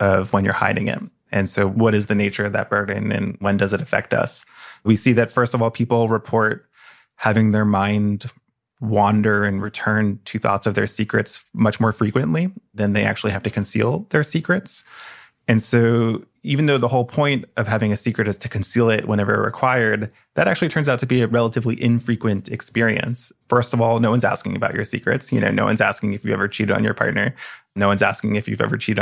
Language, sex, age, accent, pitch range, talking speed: English, male, 20-39, American, 105-120 Hz, 215 wpm